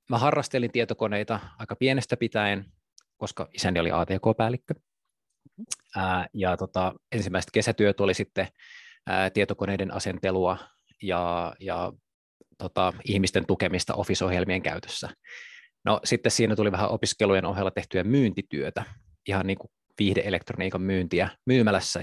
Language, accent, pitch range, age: Finnish, native, 95-115 Hz, 20-39